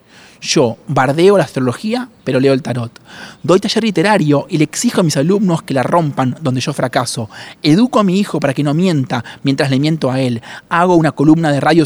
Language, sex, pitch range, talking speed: Spanish, male, 130-160 Hz, 205 wpm